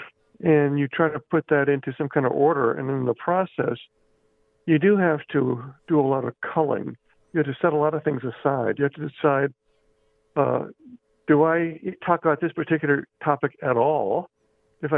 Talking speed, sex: 190 wpm, male